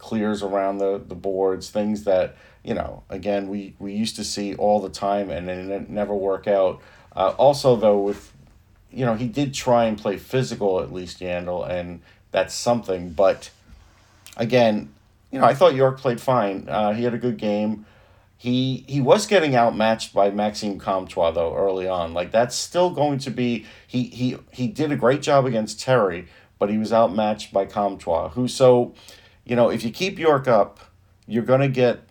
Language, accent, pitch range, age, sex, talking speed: English, American, 100-120 Hz, 40-59, male, 190 wpm